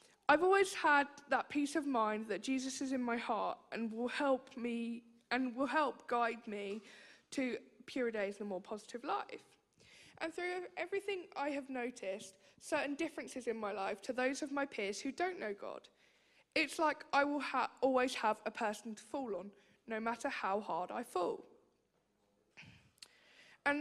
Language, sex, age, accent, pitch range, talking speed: English, female, 10-29, British, 215-280 Hz, 175 wpm